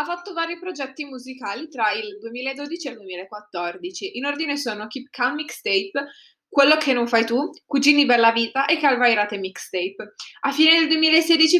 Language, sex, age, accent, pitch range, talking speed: Italian, female, 20-39, native, 215-285 Hz, 165 wpm